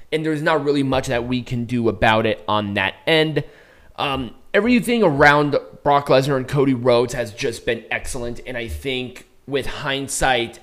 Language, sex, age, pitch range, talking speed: English, male, 20-39, 115-155 Hz, 175 wpm